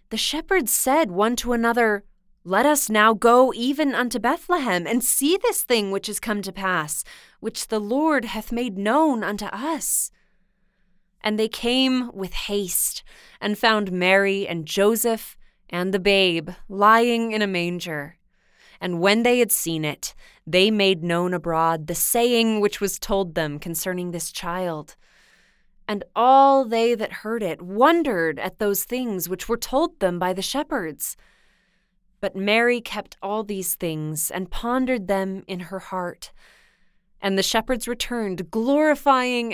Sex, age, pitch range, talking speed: female, 20-39, 180-230 Hz, 150 wpm